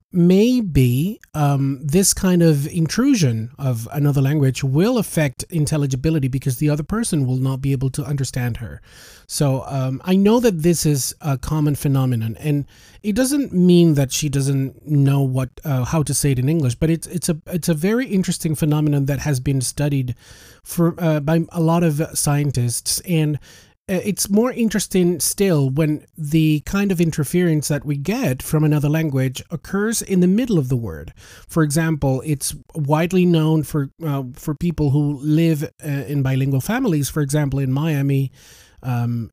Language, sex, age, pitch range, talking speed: English, male, 30-49, 135-165 Hz, 170 wpm